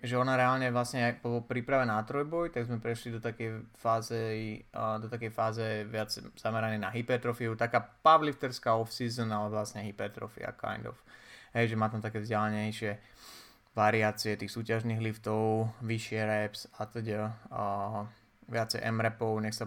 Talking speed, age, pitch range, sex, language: 150 wpm, 20-39, 105-115 Hz, male, Slovak